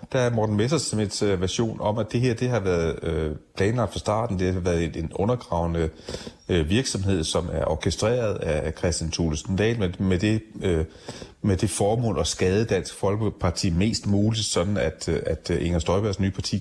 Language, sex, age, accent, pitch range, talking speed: Danish, male, 30-49, native, 85-105 Hz, 200 wpm